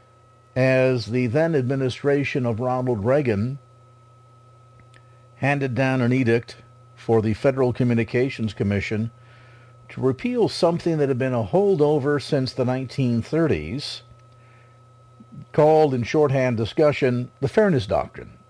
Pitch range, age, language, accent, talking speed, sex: 115-140 Hz, 50-69, English, American, 105 wpm, male